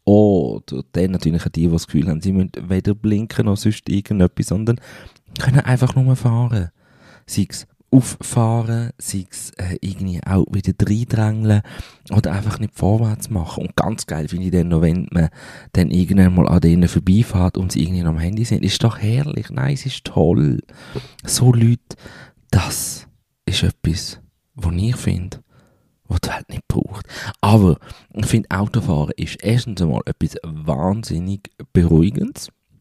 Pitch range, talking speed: 85-110 Hz, 160 wpm